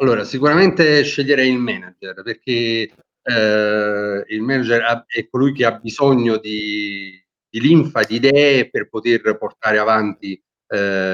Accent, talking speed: native, 130 wpm